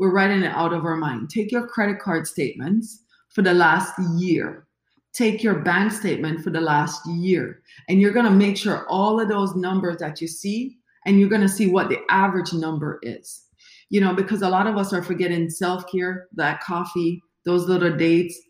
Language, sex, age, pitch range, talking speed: English, female, 30-49, 170-210 Hz, 200 wpm